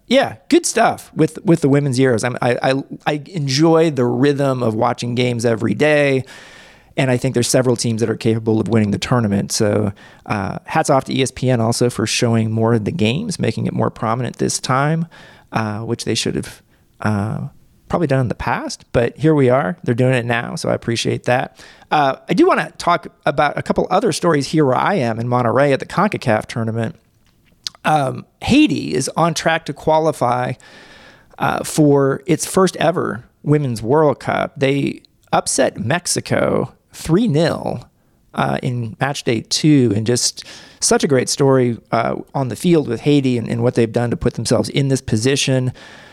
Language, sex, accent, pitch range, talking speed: English, male, American, 115-145 Hz, 185 wpm